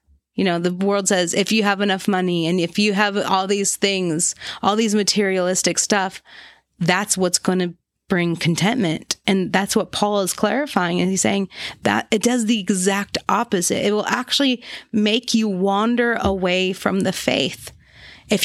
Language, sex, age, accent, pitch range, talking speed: English, female, 30-49, American, 180-220 Hz, 170 wpm